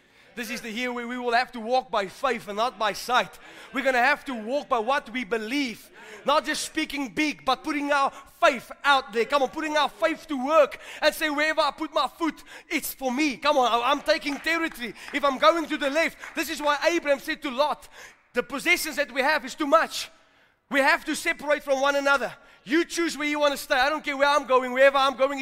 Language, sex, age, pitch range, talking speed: English, male, 20-39, 260-330 Hz, 240 wpm